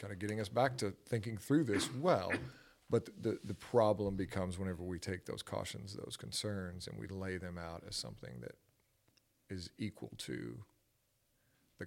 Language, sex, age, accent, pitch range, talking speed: English, male, 40-59, American, 95-130 Hz, 175 wpm